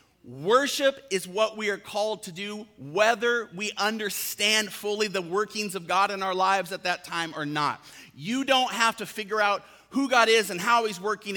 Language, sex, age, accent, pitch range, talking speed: English, male, 40-59, American, 155-210 Hz, 195 wpm